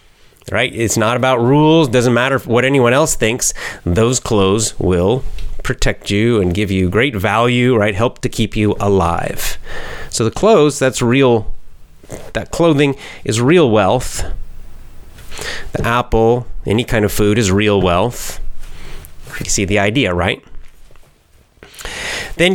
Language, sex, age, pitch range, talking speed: English, male, 30-49, 95-120 Hz, 140 wpm